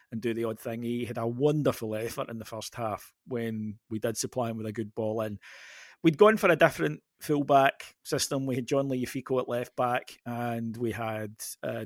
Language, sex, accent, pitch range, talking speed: English, male, British, 120-135 Hz, 215 wpm